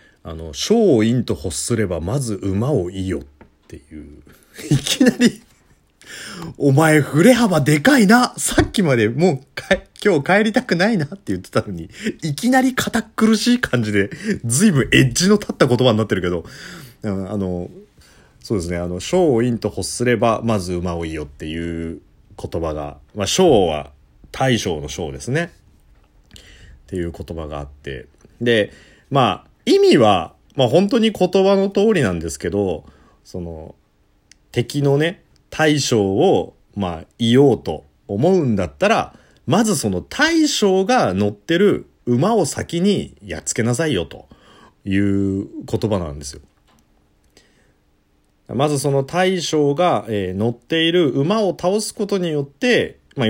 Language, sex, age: Japanese, male, 40-59